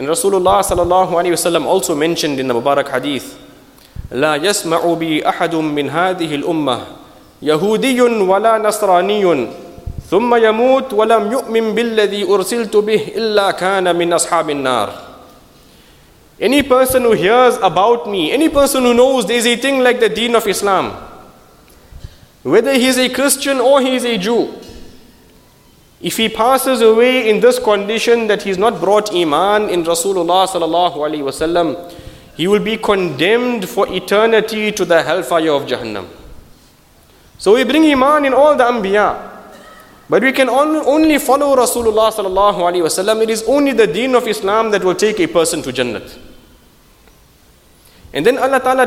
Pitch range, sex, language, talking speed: 170-240 Hz, male, English, 125 wpm